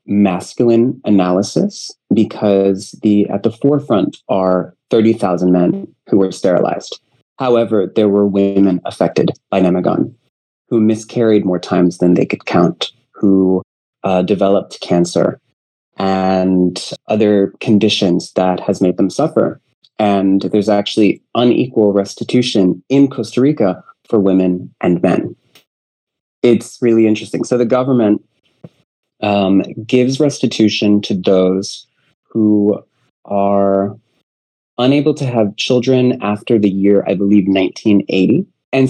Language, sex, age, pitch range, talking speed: English, male, 30-49, 95-115 Hz, 115 wpm